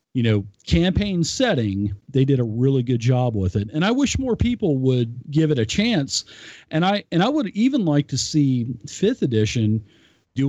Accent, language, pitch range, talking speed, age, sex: American, English, 110-145 Hz, 195 wpm, 40-59, male